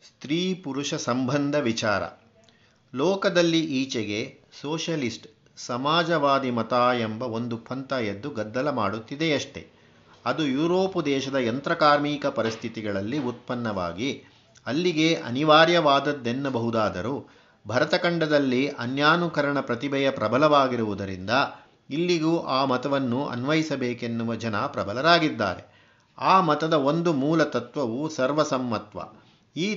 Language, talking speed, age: Kannada, 80 wpm, 50-69